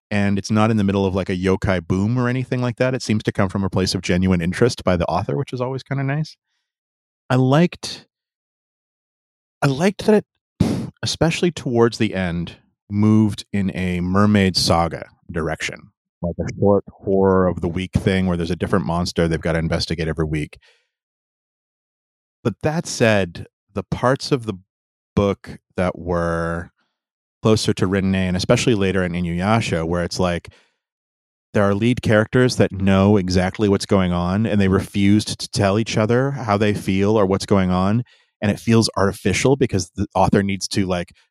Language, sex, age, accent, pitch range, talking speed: English, male, 30-49, American, 95-120 Hz, 180 wpm